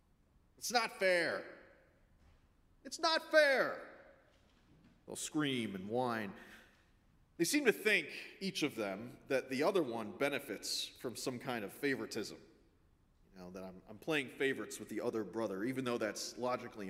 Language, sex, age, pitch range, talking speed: English, male, 40-59, 100-145 Hz, 150 wpm